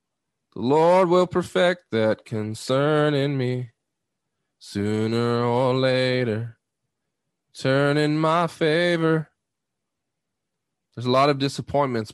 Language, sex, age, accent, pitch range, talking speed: English, male, 20-39, American, 125-160 Hz, 100 wpm